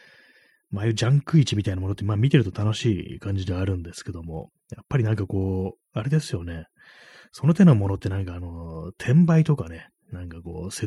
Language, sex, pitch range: Japanese, male, 90-130 Hz